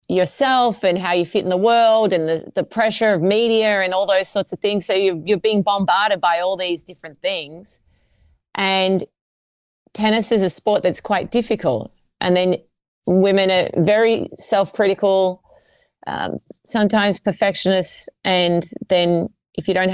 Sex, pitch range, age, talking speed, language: female, 170-210 Hz, 30-49, 155 wpm, English